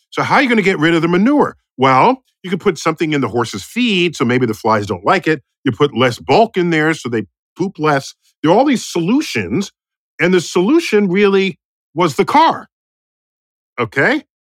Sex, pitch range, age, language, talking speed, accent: male, 125-180 Hz, 50-69, English, 210 wpm, American